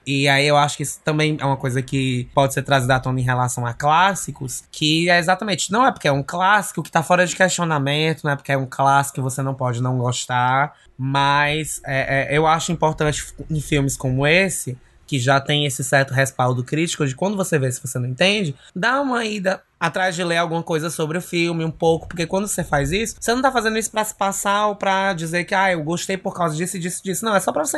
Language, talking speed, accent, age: Portuguese, 245 wpm, Brazilian, 20-39